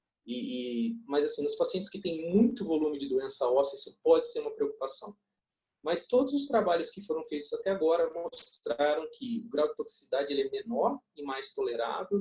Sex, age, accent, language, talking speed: male, 40-59, Brazilian, Portuguese, 185 wpm